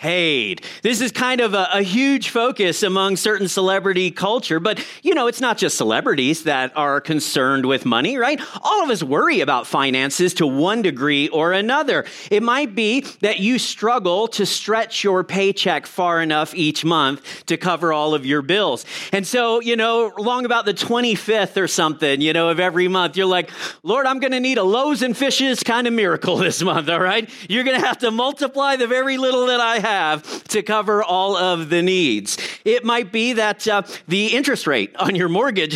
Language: English